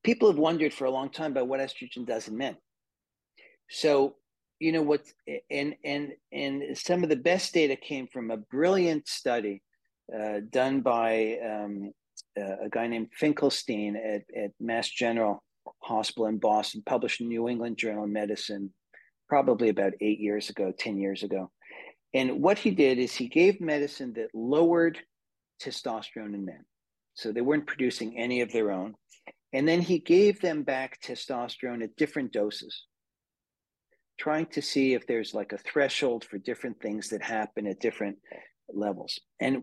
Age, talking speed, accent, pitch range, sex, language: 40-59, 165 wpm, American, 115-155 Hz, male, English